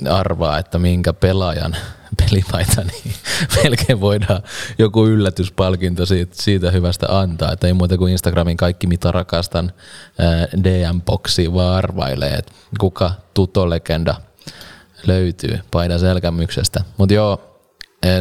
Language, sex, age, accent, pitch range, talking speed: Finnish, male, 20-39, native, 80-95 Hz, 100 wpm